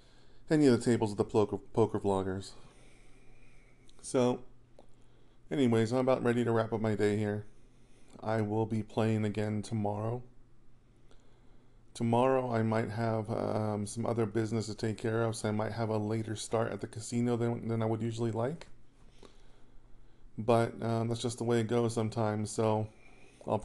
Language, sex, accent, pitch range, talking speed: English, male, American, 110-125 Hz, 165 wpm